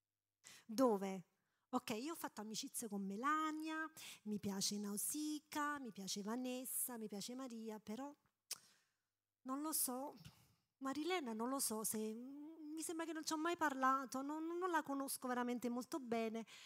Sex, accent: female, native